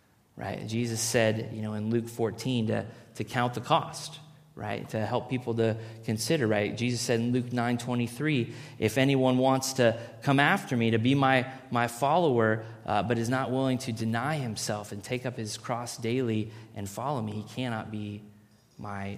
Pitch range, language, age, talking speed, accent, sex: 110-130 Hz, English, 20-39, 180 wpm, American, male